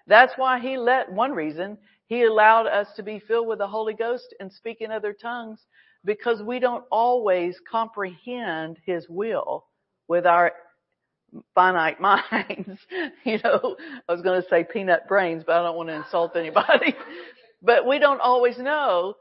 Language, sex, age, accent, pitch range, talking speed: English, female, 50-69, American, 165-240 Hz, 165 wpm